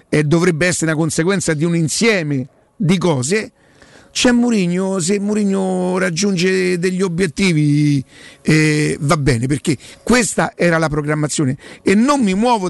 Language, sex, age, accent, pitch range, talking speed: Italian, male, 50-69, native, 150-180 Hz, 135 wpm